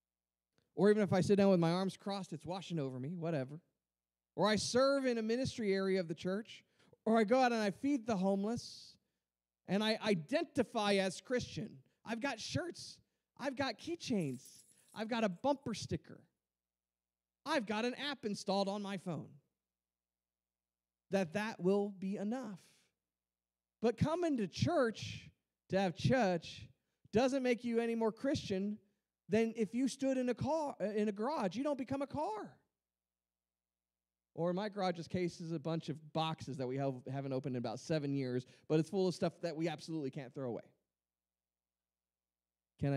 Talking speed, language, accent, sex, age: 170 wpm, English, American, male, 40-59